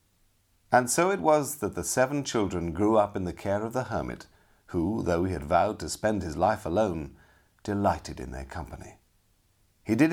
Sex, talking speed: male, 190 wpm